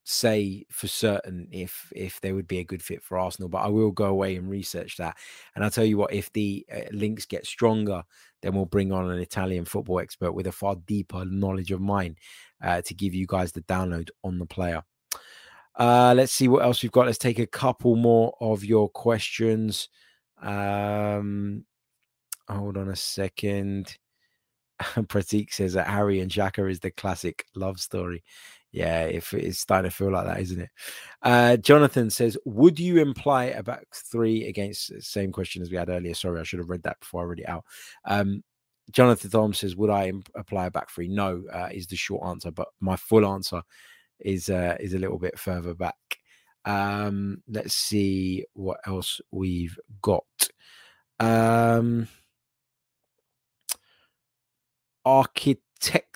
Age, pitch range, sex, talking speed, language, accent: 20-39, 95-115 Hz, male, 175 wpm, English, British